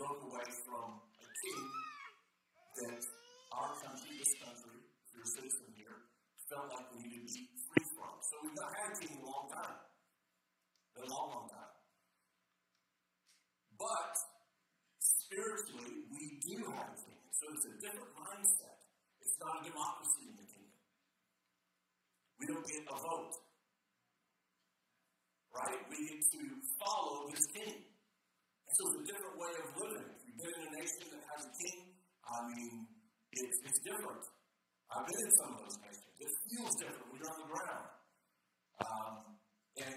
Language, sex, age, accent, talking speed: English, male, 50-69, American, 160 wpm